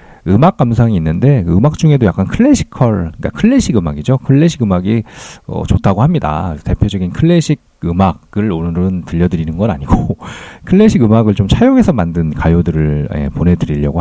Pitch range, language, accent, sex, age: 85-135 Hz, Korean, native, male, 40-59